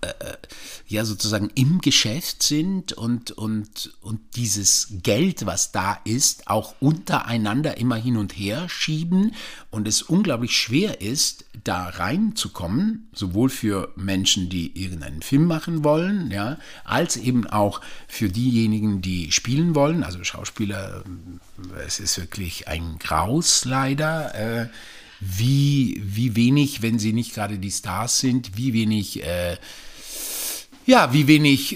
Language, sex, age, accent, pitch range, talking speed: German, male, 50-69, German, 100-145 Hz, 125 wpm